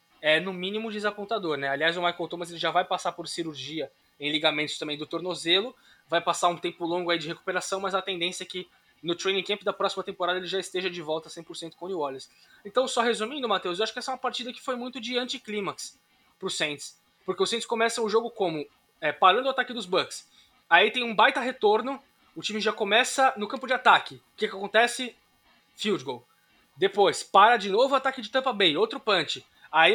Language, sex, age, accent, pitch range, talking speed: Portuguese, male, 20-39, Brazilian, 180-230 Hz, 220 wpm